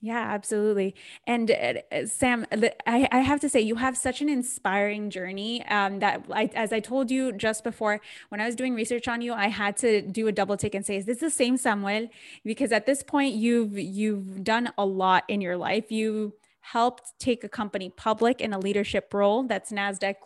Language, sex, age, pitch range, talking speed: English, female, 10-29, 195-235 Hz, 205 wpm